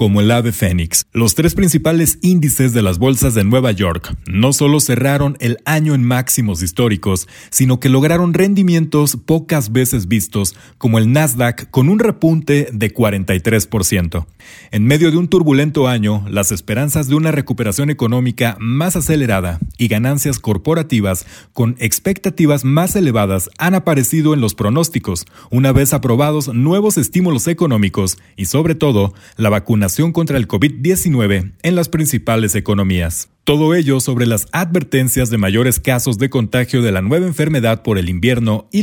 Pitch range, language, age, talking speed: 100-150 Hz, Spanish, 40-59, 155 wpm